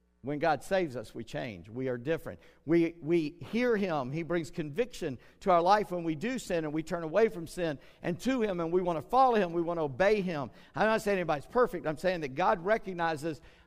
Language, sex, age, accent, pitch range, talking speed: English, male, 50-69, American, 140-185 Hz, 235 wpm